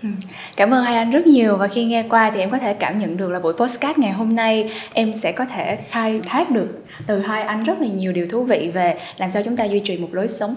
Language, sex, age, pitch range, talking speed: Vietnamese, female, 10-29, 190-245 Hz, 280 wpm